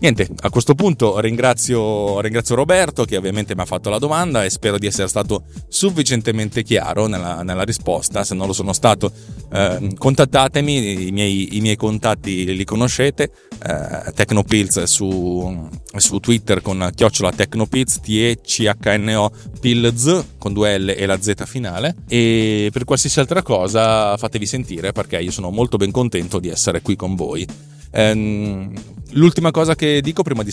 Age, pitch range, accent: 30-49, 100-135 Hz, native